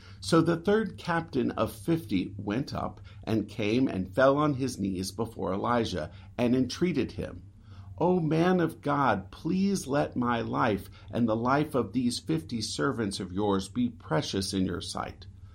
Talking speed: 160 wpm